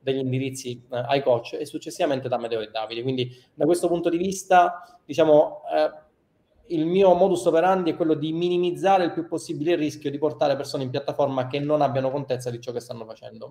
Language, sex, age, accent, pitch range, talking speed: Italian, male, 20-39, native, 130-160 Hz, 205 wpm